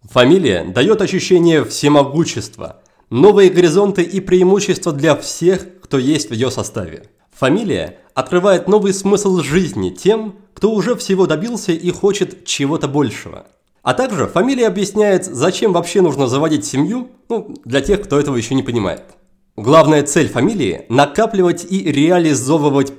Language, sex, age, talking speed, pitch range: Russian, male, 30-49, 135 wpm, 140-190 Hz